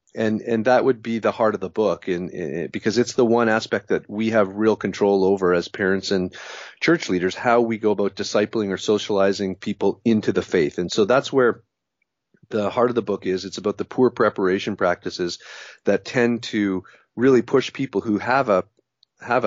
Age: 30-49